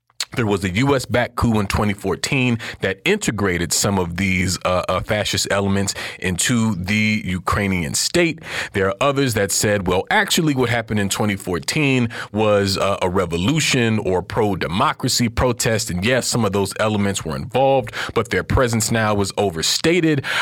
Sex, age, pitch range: male, 40-59, 100-135 Hz